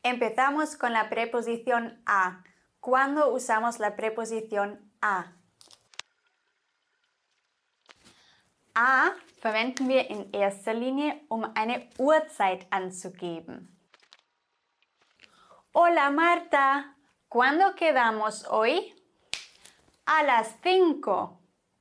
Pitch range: 210-325 Hz